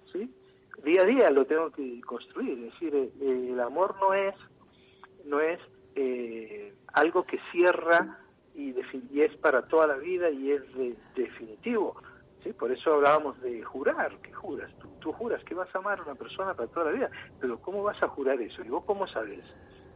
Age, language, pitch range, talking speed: 60-79, Spanish, 145-235 Hz, 195 wpm